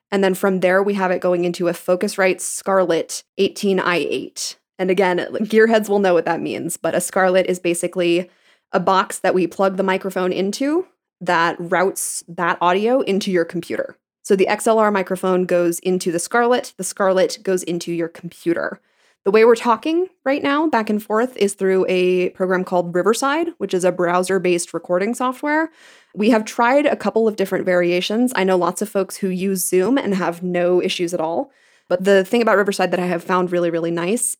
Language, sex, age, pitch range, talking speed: English, female, 20-39, 175-205 Hz, 195 wpm